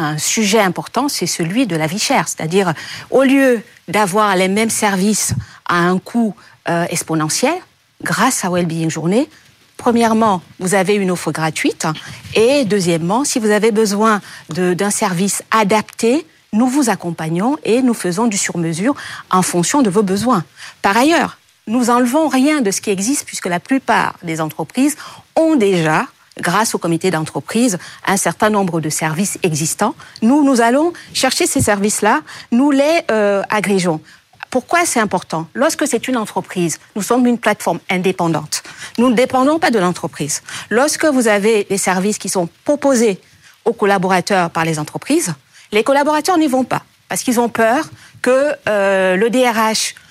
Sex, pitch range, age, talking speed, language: female, 180-250 Hz, 50-69, 160 wpm, French